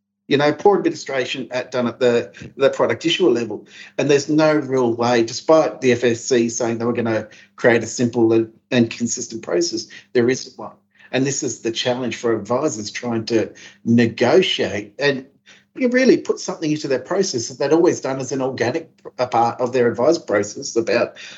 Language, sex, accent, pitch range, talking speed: English, male, Australian, 120-200 Hz, 185 wpm